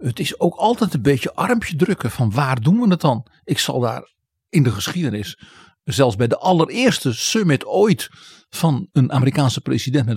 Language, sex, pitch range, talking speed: Dutch, male, 140-195 Hz, 185 wpm